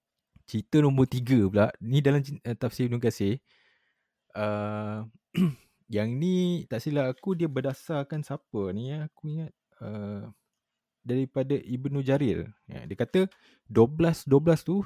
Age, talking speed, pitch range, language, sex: 20-39, 125 wpm, 100-130 Hz, Malay, male